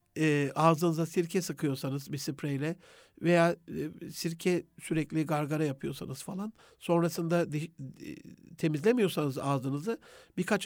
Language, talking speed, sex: Turkish, 105 wpm, male